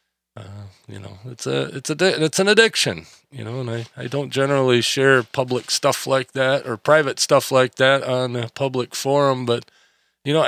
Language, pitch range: English, 115-140 Hz